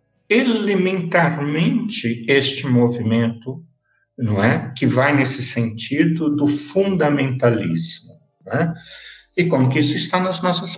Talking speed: 110 wpm